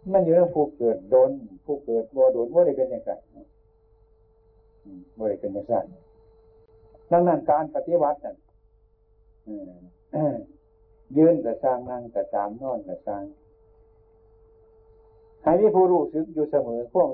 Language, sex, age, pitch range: Thai, male, 60-79, 110-170 Hz